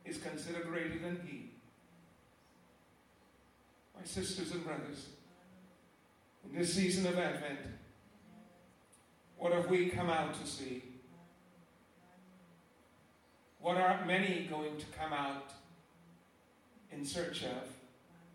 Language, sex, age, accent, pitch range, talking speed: English, male, 50-69, American, 155-180 Hz, 100 wpm